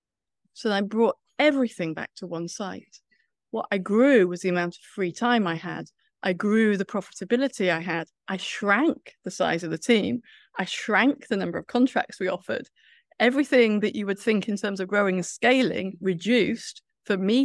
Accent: British